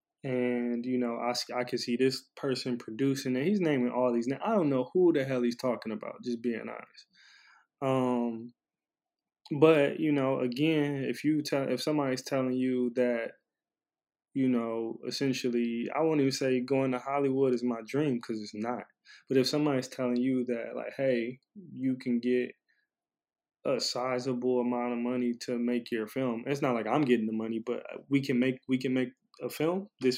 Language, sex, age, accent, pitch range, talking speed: English, male, 20-39, American, 120-135 Hz, 185 wpm